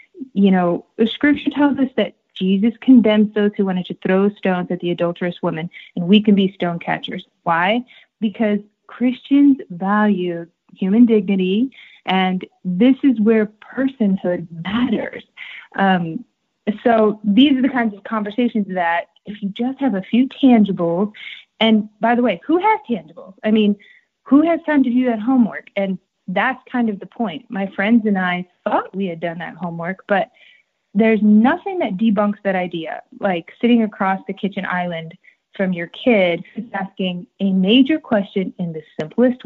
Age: 30-49